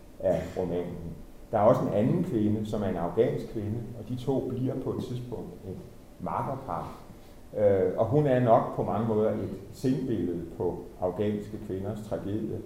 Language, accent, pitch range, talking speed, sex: Danish, native, 90-115 Hz, 160 wpm, male